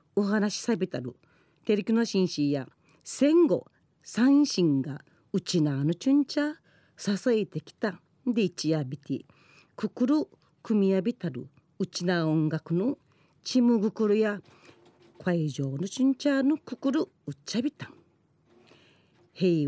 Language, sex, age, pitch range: Japanese, female, 40-59, 160-230 Hz